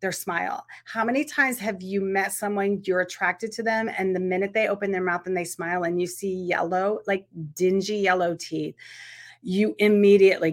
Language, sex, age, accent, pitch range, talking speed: English, female, 30-49, American, 180-220 Hz, 190 wpm